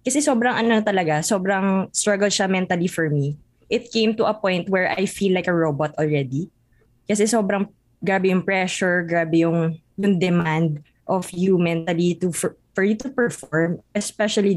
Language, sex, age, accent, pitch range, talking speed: Filipino, female, 20-39, native, 170-220 Hz, 170 wpm